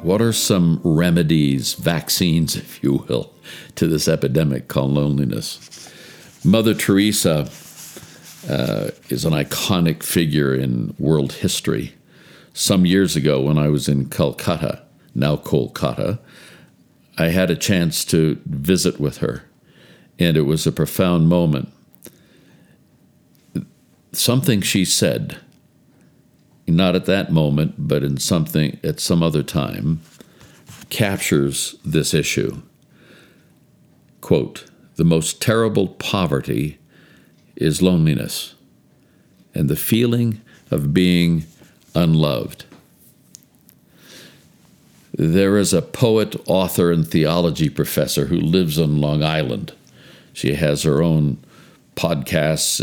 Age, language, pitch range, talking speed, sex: 60-79, English, 75-95 Hz, 110 wpm, male